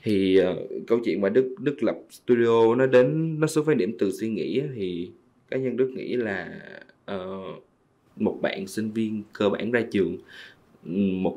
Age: 20-39